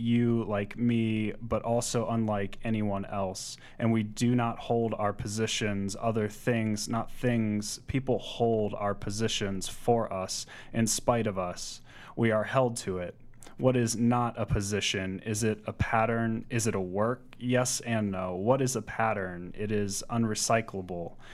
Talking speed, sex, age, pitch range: 160 wpm, male, 20-39, 100-115 Hz